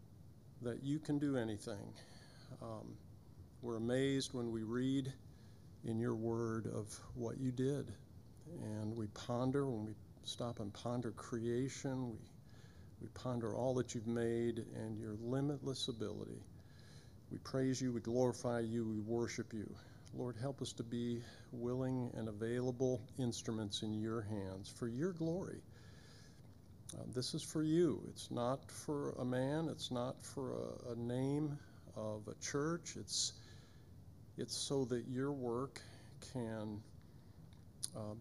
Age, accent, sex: 50-69, American, male